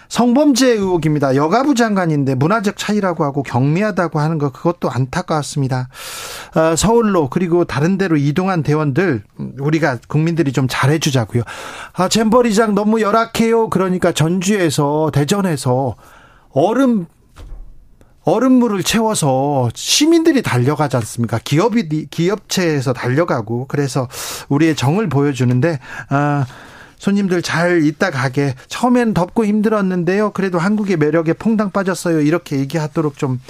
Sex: male